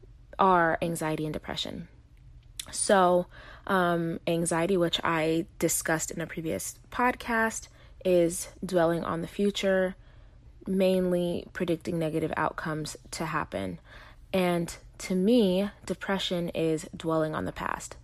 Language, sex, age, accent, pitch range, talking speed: English, female, 20-39, American, 160-190 Hz, 115 wpm